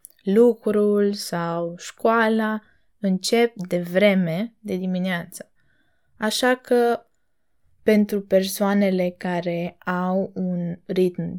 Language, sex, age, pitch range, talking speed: Romanian, female, 20-39, 180-235 Hz, 85 wpm